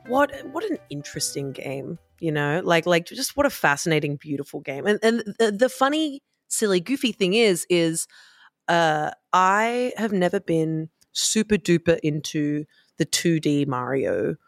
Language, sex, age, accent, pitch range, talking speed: English, female, 30-49, Australian, 150-185 Hz, 150 wpm